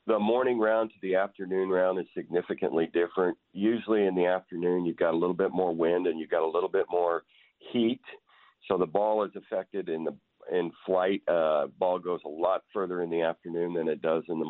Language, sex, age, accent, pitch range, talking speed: English, male, 50-69, American, 90-110 Hz, 215 wpm